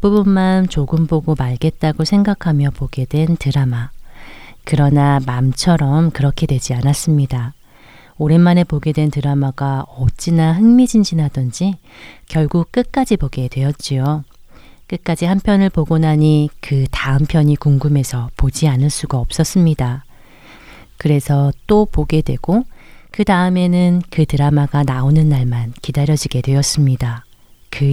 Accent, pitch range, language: native, 130-165 Hz, Korean